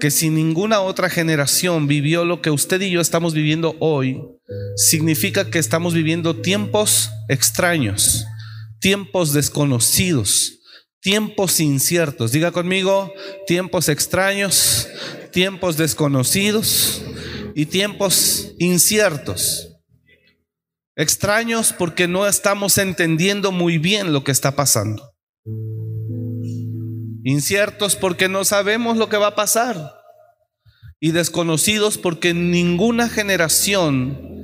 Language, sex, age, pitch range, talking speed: Spanish, male, 40-59, 135-190 Hz, 100 wpm